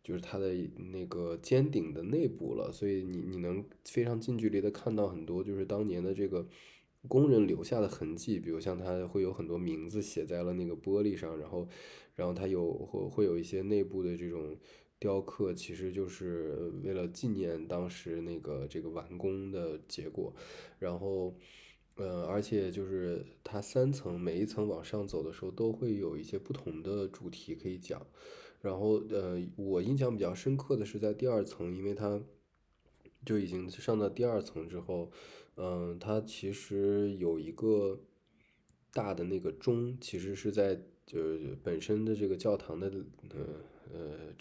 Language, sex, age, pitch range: Chinese, male, 20-39, 85-100 Hz